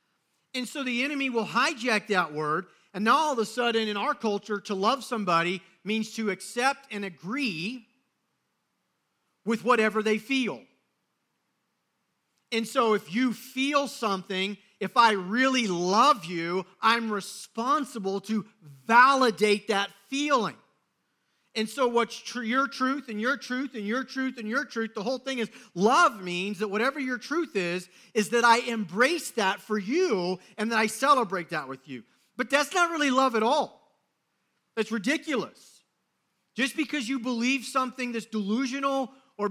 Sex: male